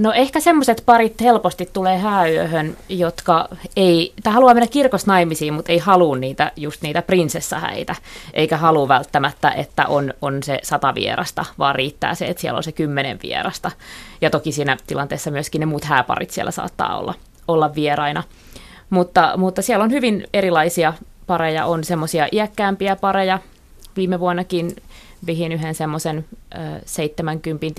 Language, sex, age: Finnish, female, 30-49